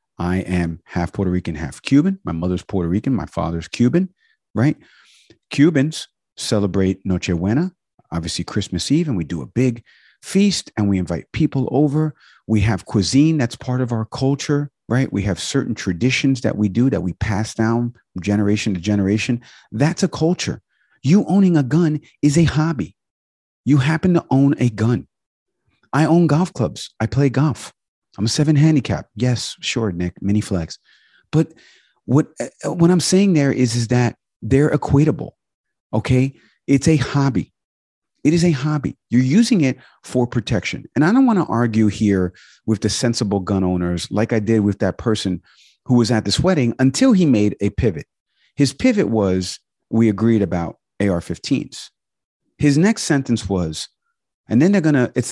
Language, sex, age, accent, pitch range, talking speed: English, male, 50-69, American, 100-150 Hz, 170 wpm